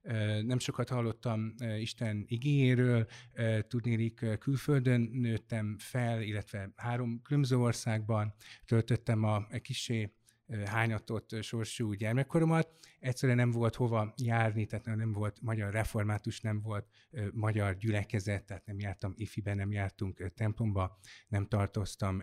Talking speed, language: 115 wpm, Hungarian